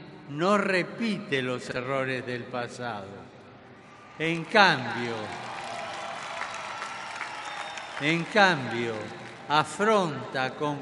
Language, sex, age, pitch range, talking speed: Spanish, male, 50-69, 125-175 Hz, 65 wpm